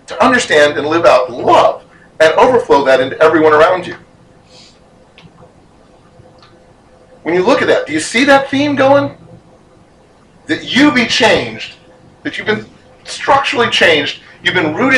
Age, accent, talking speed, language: 40-59, American, 145 wpm, English